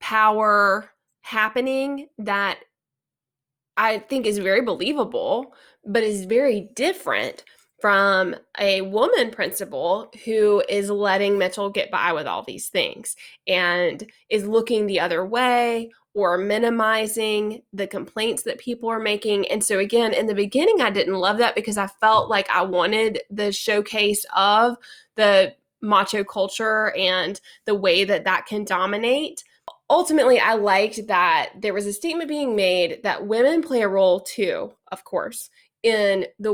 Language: English